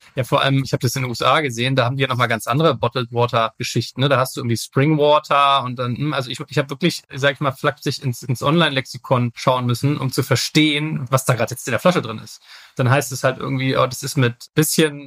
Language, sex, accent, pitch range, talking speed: German, male, German, 130-160 Hz, 240 wpm